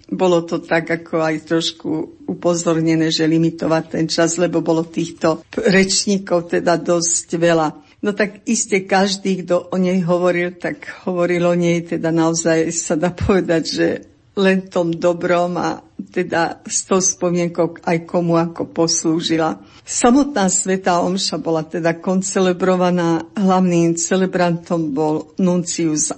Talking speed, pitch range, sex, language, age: 130 wpm, 170-190 Hz, female, Slovak, 50-69